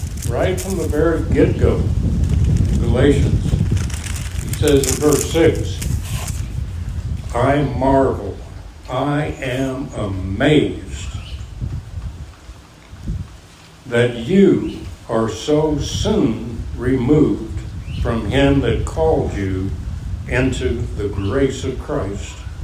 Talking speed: 85 wpm